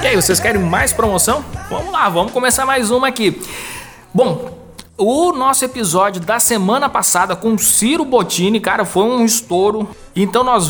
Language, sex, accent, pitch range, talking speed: Portuguese, male, Brazilian, 185-225 Hz, 170 wpm